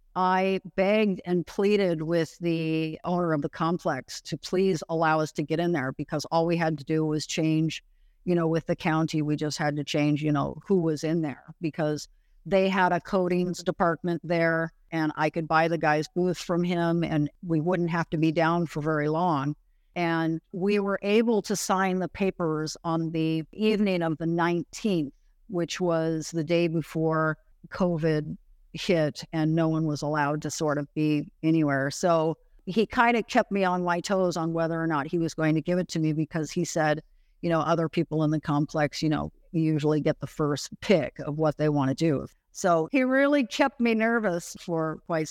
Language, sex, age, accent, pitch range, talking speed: English, female, 50-69, American, 155-175 Hz, 200 wpm